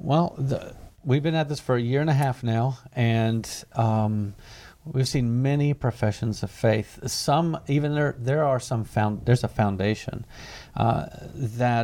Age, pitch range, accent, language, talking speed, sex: 50-69, 110-125 Hz, American, English, 165 wpm, male